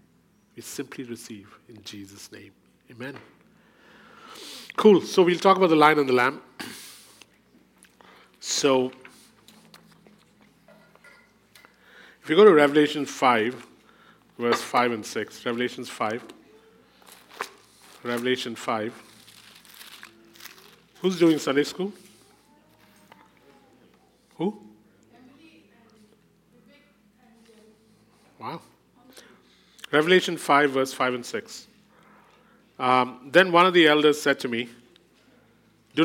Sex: male